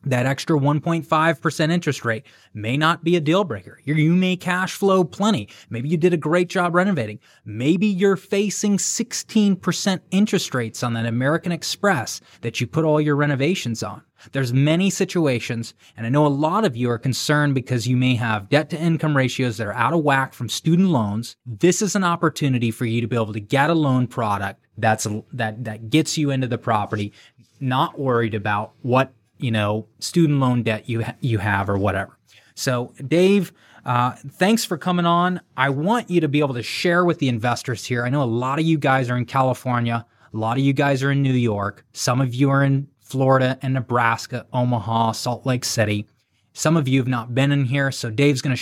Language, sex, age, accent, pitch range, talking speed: English, male, 20-39, American, 115-160 Hz, 205 wpm